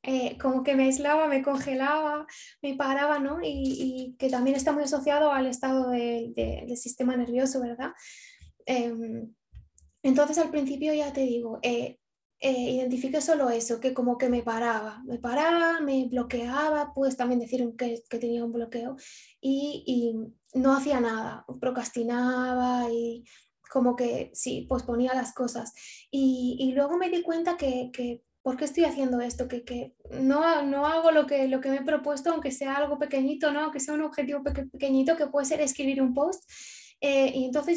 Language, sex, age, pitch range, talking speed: Spanish, female, 10-29, 250-290 Hz, 180 wpm